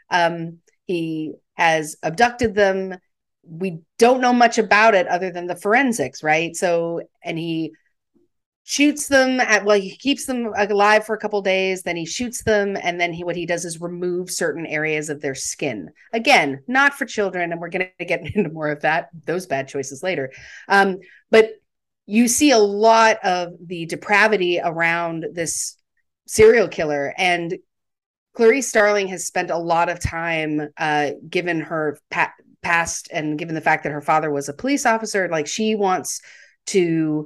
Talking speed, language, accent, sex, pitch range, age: 170 wpm, English, American, female, 165-210 Hz, 40-59